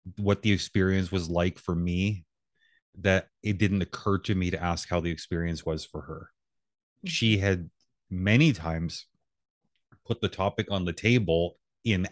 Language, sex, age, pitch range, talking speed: English, male, 30-49, 85-105 Hz, 160 wpm